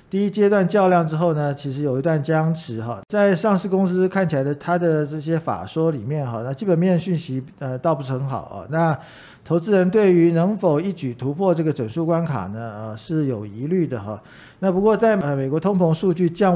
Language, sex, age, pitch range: Chinese, male, 50-69, 135-175 Hz